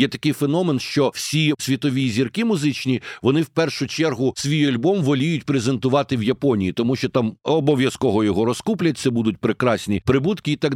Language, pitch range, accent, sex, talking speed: Ukrainian, 125-155 Hz, native, male, 165 wpm